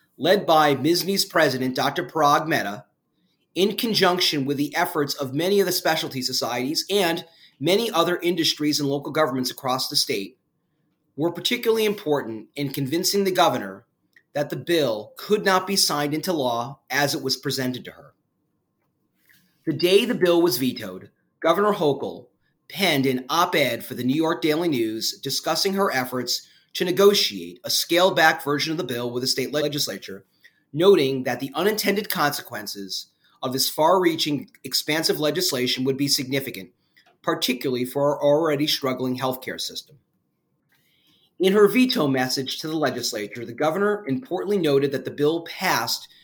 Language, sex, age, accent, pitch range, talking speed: English, male, 30-49, American, 130-175 Hz, 155 wpm